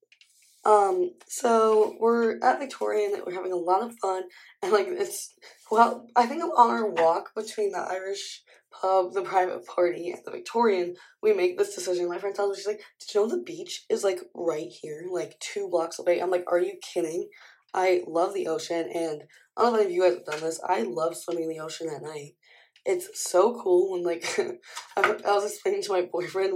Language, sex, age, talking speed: English, female, 20-39, 215 wpm